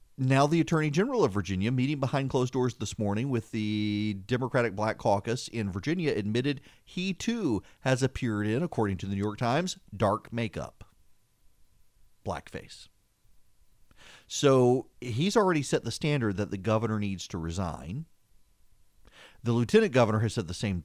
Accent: American